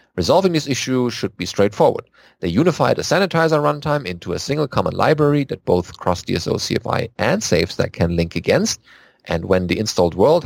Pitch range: 100-155 Hz